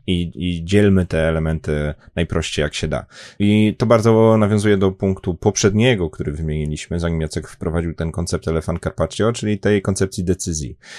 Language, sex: Polish, male